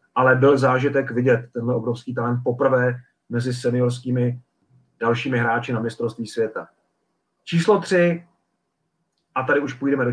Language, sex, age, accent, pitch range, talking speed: Czech, male, 40-59, native, 125-150 Hz, 130 wpm